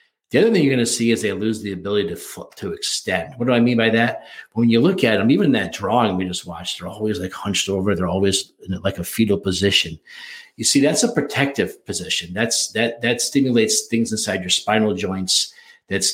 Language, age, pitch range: English, 50-69, 95-120 Hz